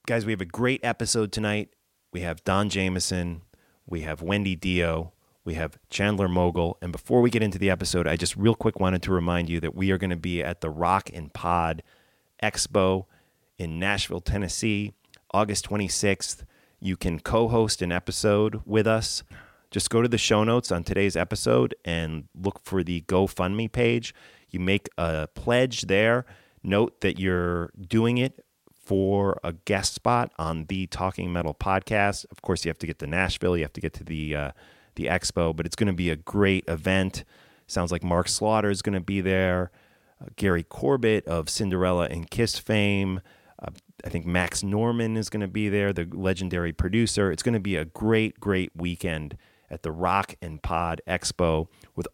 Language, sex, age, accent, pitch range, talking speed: English, male, 30-49, American, 85-105 Hz, 185 wpm